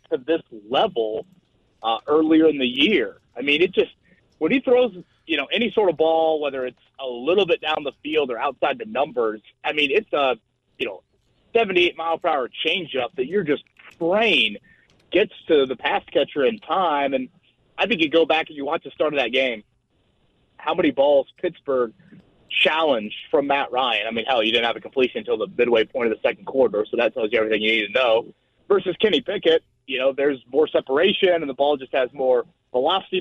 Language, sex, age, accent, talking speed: English, male, 30-49, American, 205 wpm